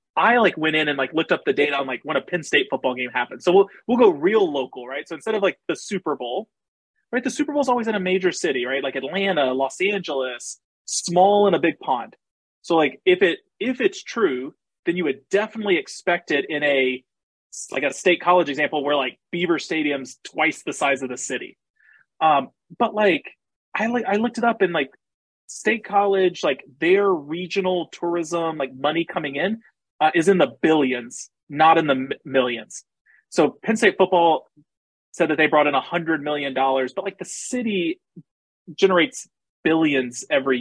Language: English